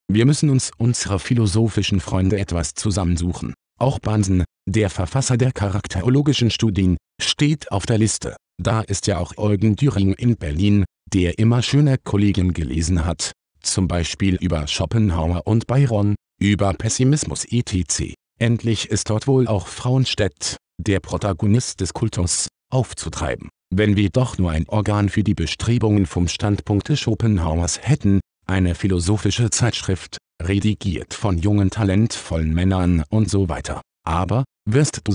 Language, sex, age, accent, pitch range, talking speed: German, male, 50-69, German, 90-115 Hz, 140 wpm